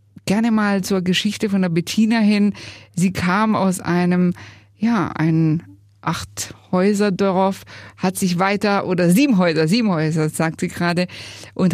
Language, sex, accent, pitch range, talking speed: German, female, German, 160-195 Hz, 145 wpm